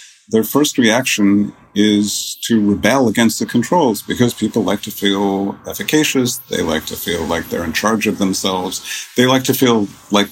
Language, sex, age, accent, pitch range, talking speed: English, male, 50-69, American, 95-115 Hz, 175 wpm